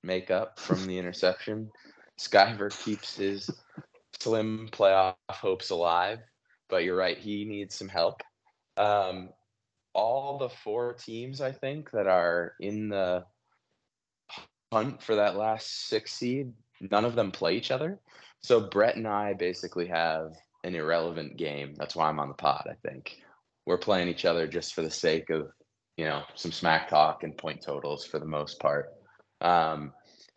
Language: English